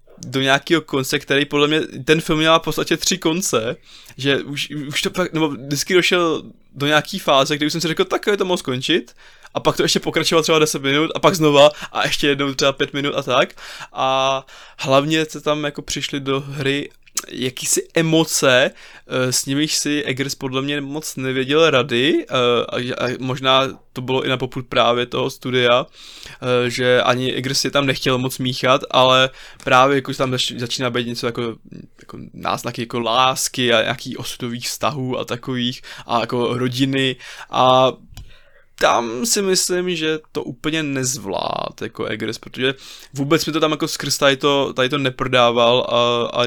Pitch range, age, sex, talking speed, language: 125-145 Hz, 20-39, male, 175 wpm, Czech